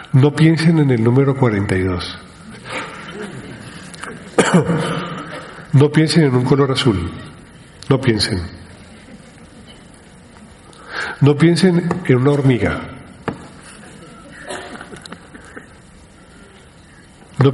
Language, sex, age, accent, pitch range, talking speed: Spanish, male, 50-69, Argentinian, 115-160 Hz, 70 wpm